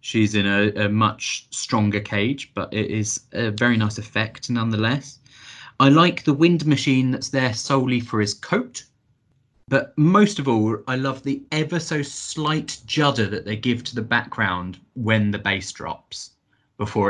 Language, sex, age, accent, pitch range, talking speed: English, male, 20-39, British, 105-145 Hz, 170 wpm